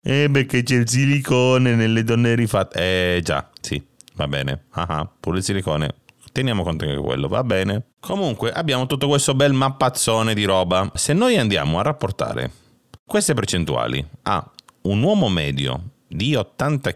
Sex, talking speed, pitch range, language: male, 160 wpm, 95-140 Hz, Italian